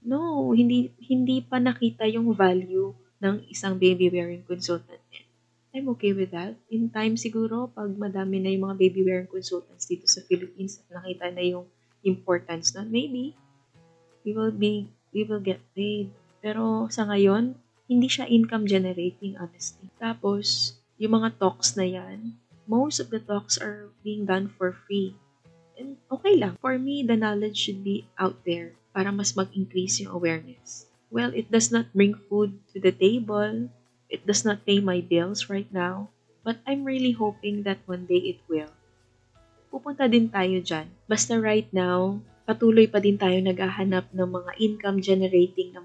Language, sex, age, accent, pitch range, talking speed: Filipino, female, 20-39, native, 175-220 Hz, 160 wpm